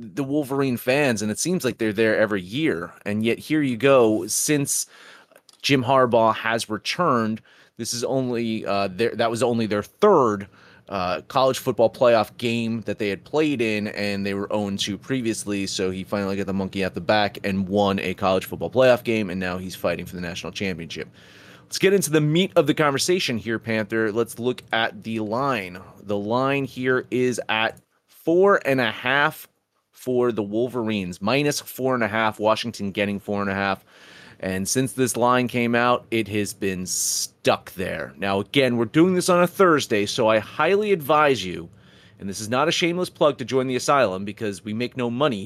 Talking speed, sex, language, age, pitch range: 195 wpm, male, English, 30-49, 105-135 Hz